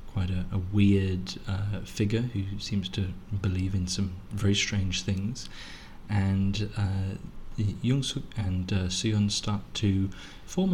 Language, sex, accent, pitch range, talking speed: English, male, British, 95-105 Hz, 140 wpm